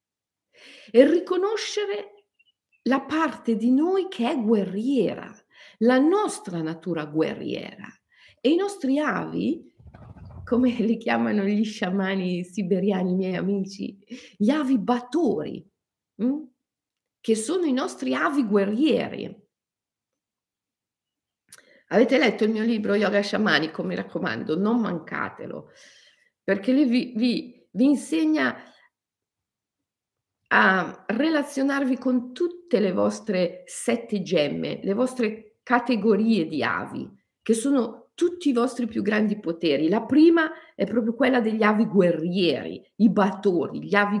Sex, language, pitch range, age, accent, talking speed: female, Italian, 205-295 Hz, 50-69, native, 115 wpm